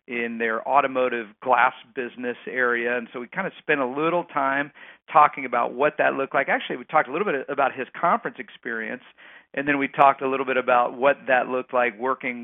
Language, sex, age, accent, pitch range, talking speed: English, male, 50-69, American, 125-155 Hz, 210 wpm